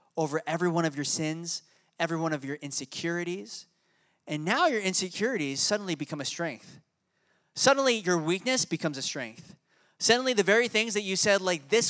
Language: English